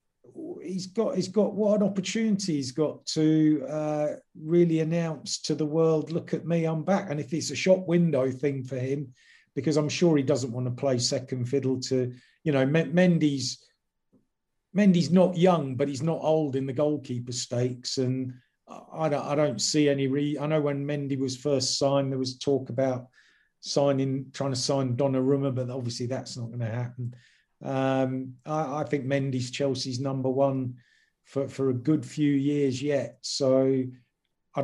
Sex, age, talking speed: male, 40-59, 185 wpm